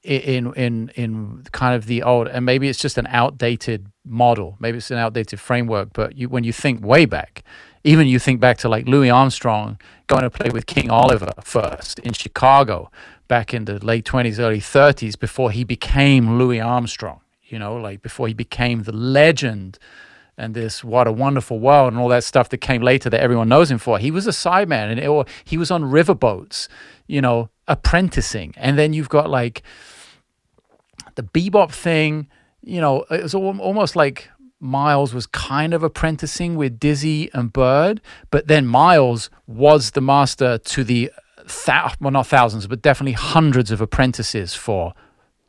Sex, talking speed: male, 180 wpm